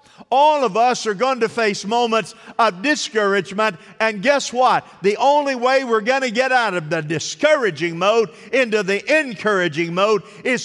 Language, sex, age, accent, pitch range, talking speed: English, male, 50-69, American, 135-225 Hz, 170 wpm